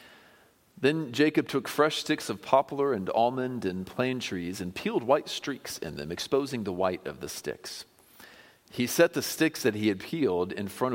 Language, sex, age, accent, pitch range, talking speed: English, male, 40-59, American, 95-130 Hz, 185 wpm